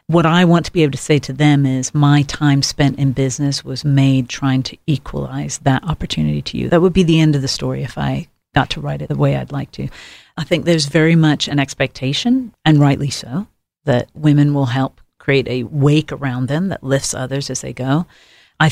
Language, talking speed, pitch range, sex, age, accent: English, 225 wpm, 135-155 Hz, female, 40-59, American